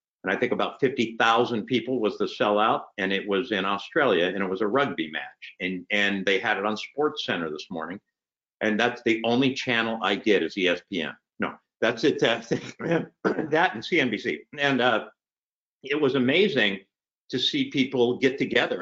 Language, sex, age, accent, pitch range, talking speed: English, male, 50-69, American, 100-125 Hz, 180 wpm